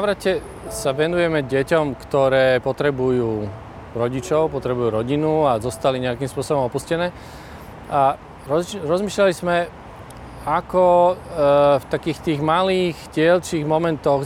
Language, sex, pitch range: Slovak, male, 130-165 Hz